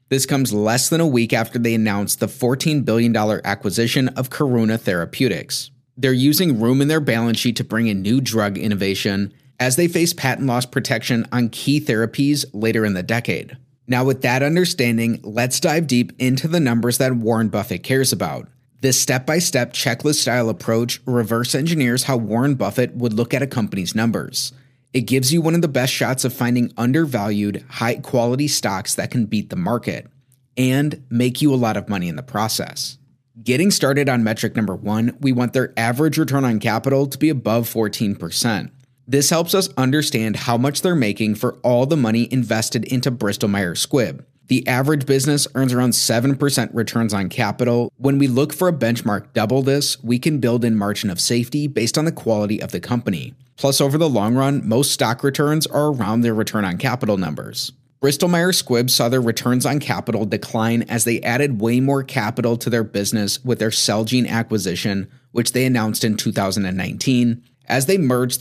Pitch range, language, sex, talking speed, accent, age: 115-135 Hz, English, male, 180 wpm, American, 30-49